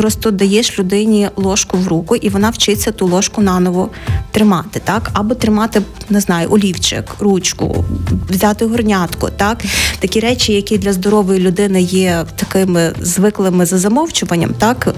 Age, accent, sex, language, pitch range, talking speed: 30-49, native, female, Ukrainian, 180-210 Hz, 140 wpm